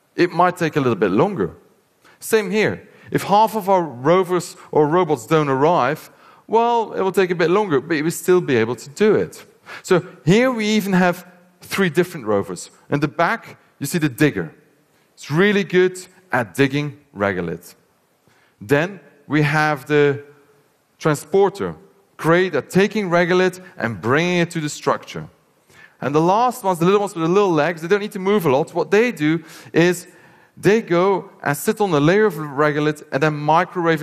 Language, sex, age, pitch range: Korean, male, 30-49, 145-185 Hz